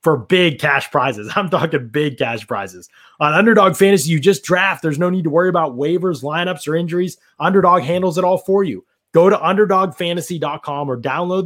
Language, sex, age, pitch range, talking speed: English, male, 20-39, 150-195 Hz, 190 wpm